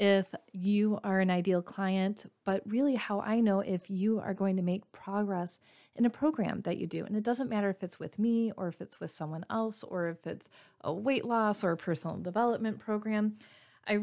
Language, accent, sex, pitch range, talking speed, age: English, American, female, 180-215 Hz, 215 wpm, 30-49